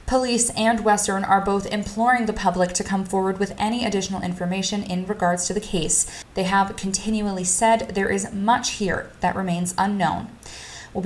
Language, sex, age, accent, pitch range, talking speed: English, female, 20-39, American, 195-240 Hz, 175 wpm